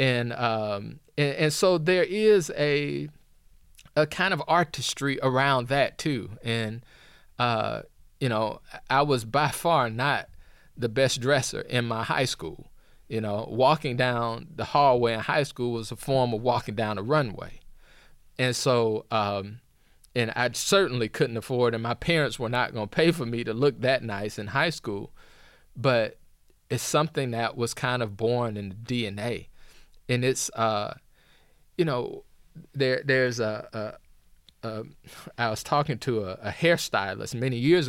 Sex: male